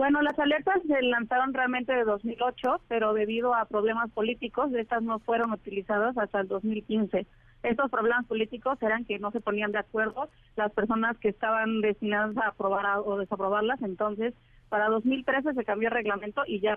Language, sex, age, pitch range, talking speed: Spanish, female, 30-49, 210-235 Hz, 170 wpm